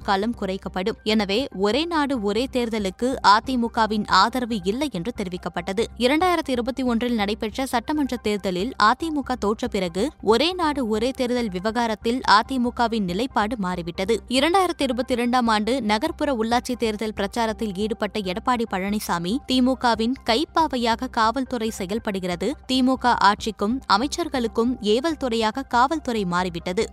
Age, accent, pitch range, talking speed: 20-39, native, 210-260 Hz, 110 wpm